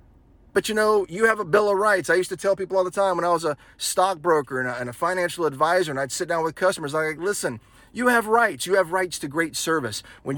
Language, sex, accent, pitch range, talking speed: English, male, American, 150-205 Hz, 265 wpm